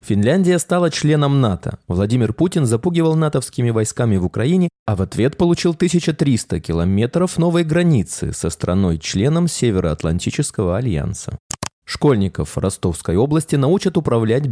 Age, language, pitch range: 20-39, Russian, 105-155 Hz